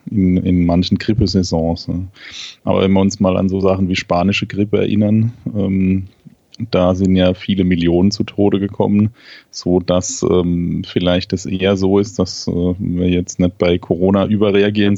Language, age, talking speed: German, 30-49, 165 wpm